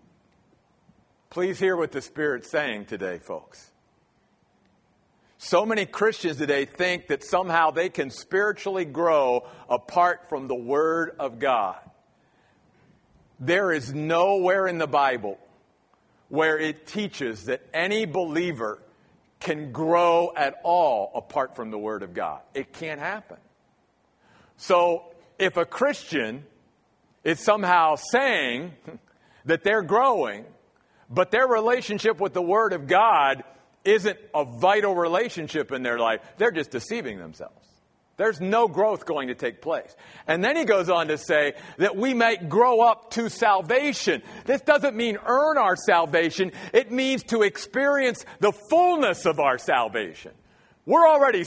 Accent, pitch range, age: American, 160-230 Hz, 50-69